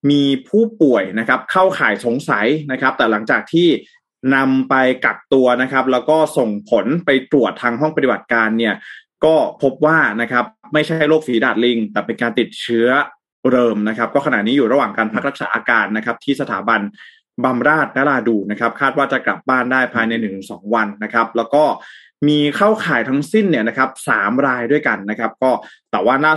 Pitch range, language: 120-150 Hz, Thai